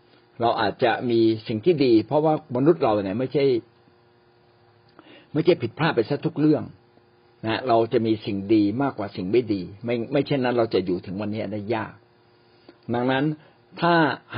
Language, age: Thai, 60-79